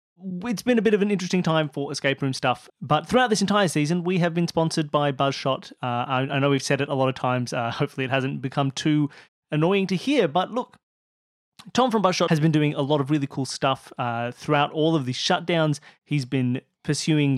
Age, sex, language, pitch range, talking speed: 30-49, male, English, 140-185 Hz, 230 wpm